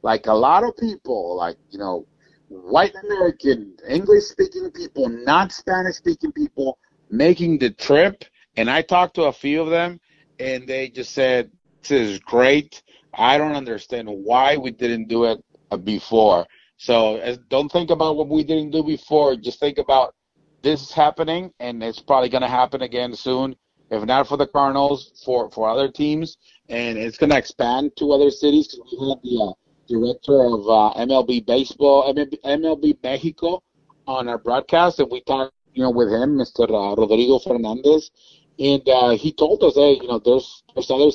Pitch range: 120-160 Hz